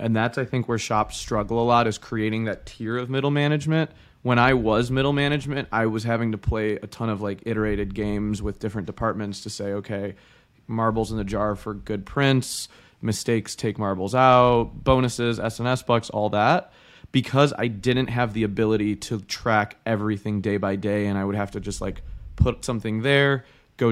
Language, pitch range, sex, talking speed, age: English, 105-120 Hz, male, 195 wpm, 20-39